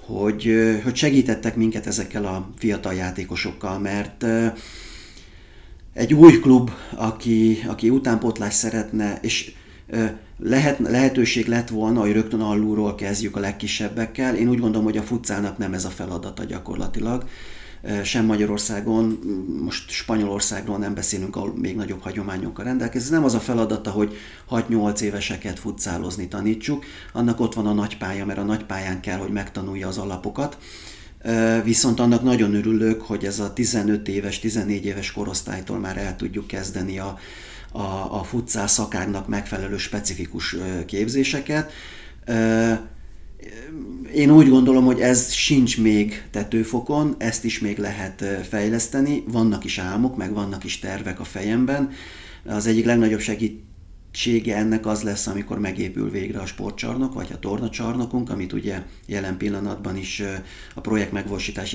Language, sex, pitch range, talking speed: Hungarian, male, 100-115 Hz, 135 wpm